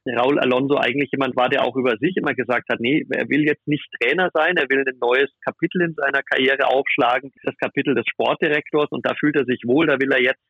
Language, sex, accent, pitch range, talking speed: German, male, German, 125-150 Hz, 240 wpm